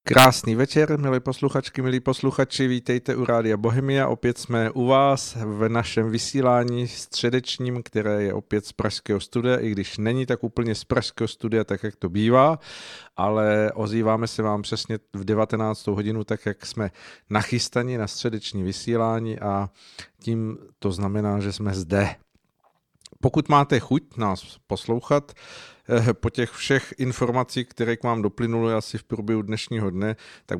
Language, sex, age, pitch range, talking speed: Czech, male, 50-69, 105-125 Hz, 150 wpm